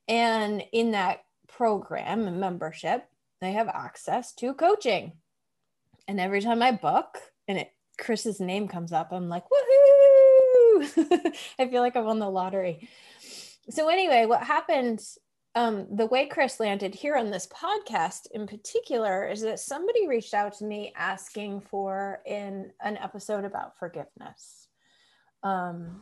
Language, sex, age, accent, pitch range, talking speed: English, female, 20-39, American, 195-275 Hz, 140 wpm